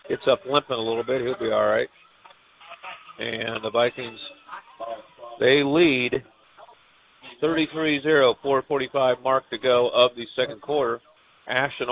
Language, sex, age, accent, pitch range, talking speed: English, male, 50-69, American, 125-145 Hz, 125 wpm